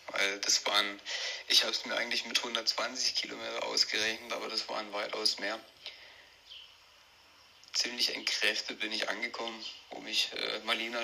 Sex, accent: male, German